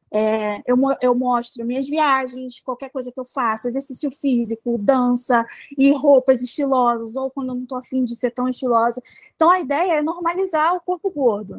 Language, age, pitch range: Portuguese, 20-39, 240-295 Hz